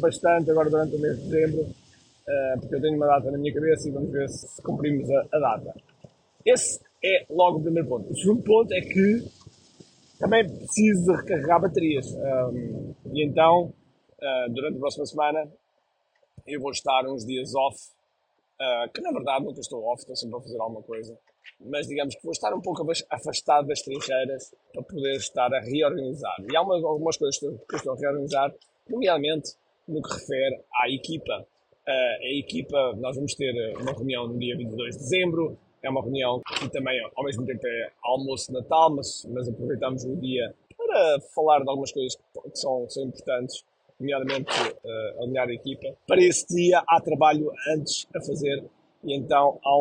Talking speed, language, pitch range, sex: 180 wpm, Portuguese, 130-160 Hz, male